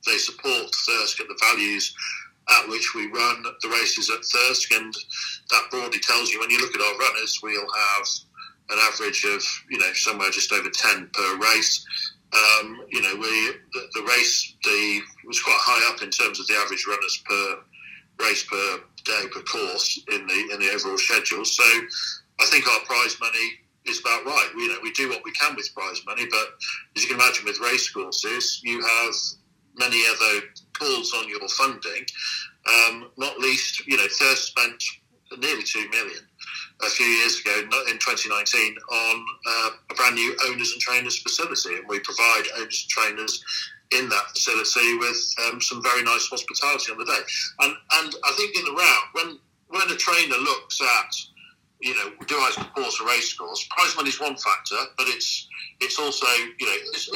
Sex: male